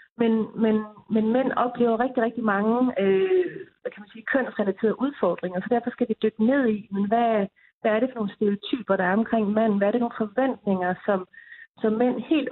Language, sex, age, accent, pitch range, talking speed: Danish, female, 40-59, native, 195-235 Hz, 190 wpm